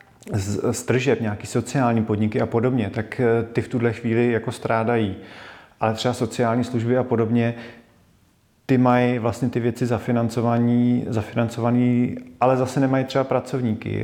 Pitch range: 110-125 Hz